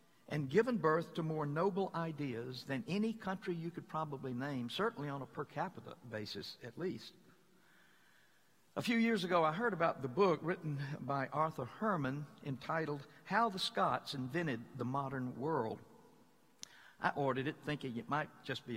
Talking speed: 165 wpm